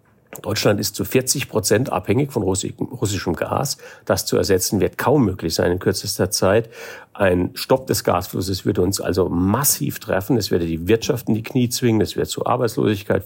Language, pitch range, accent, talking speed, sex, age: German, 95-115 Hz, German, 185 wpm, male, 50-69